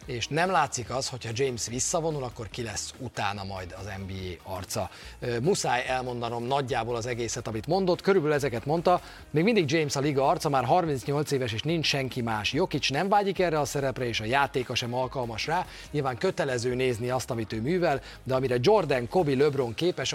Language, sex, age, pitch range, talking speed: Hungarian, male, 30-49, 120-165 Hz, 190 wpm